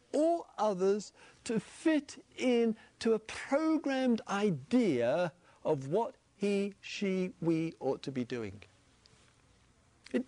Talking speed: 110 wpm